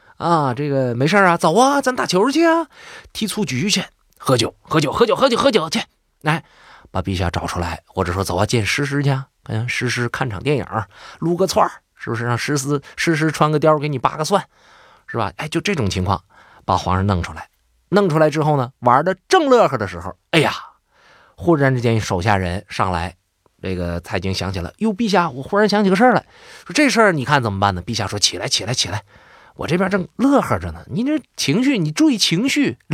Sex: male